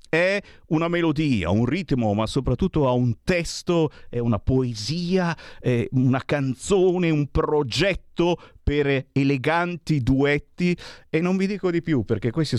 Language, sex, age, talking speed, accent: Italian, male, 50-69, 140 wpm, native